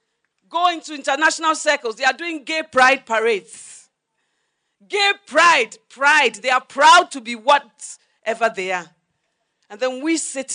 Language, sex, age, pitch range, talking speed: English, female, 40-59, 235-330 Hz, 140 wpm